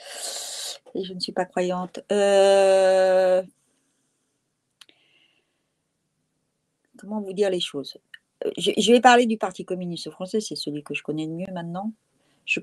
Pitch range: 175-235 Hz